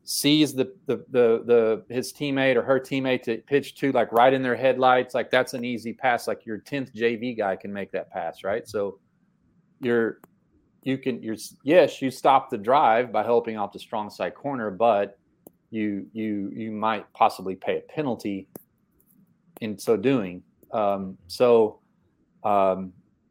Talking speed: 165 wpm